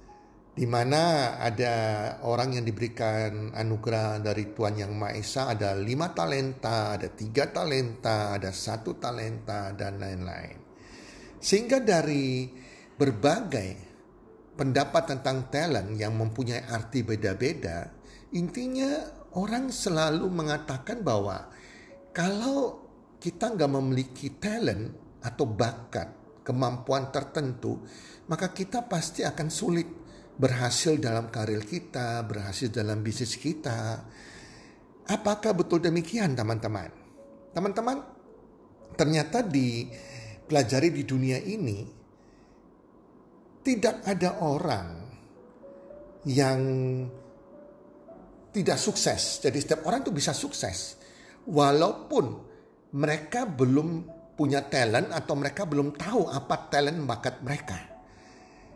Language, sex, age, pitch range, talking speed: Indonesian, male, 50-69, 115-165 Hz, 100 wpm